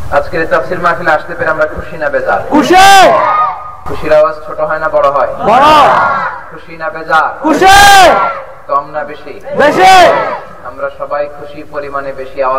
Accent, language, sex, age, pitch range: native, Bengali, male, 30-49, 145-195 Hz